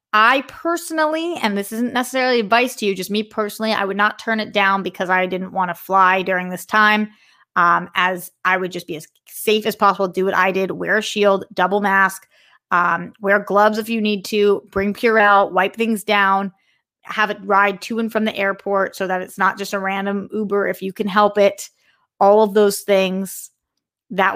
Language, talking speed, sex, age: English, 205 wpm, female, 30-49